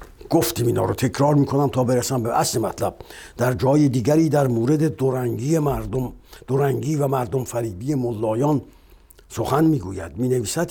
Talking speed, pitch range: 150 wpm, 120-150 Hz